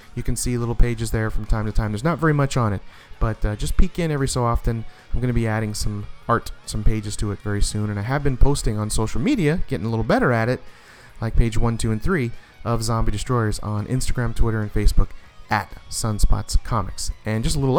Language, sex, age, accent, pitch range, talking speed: English, male, 30-49, American, 105-155 Hz, 245 wpm